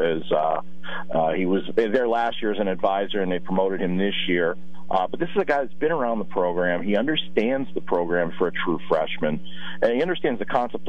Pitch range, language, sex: 90-110 Hz, English, male